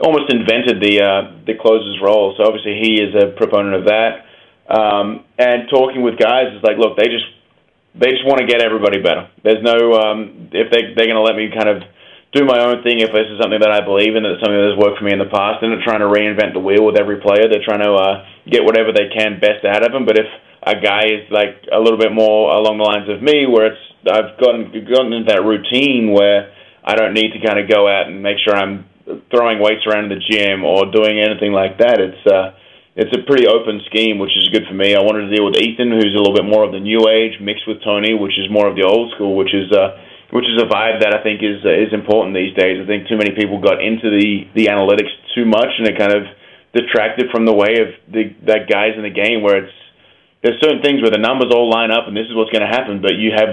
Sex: male